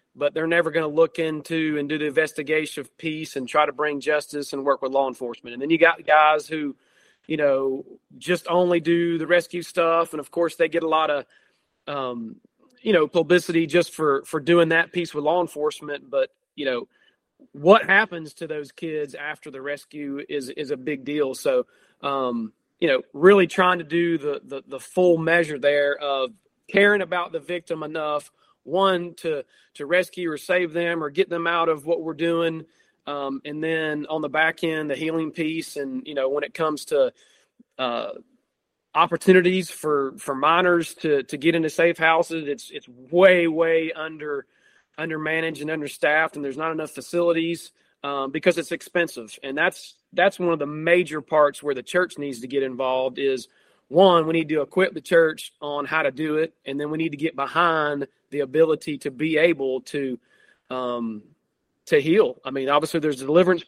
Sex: male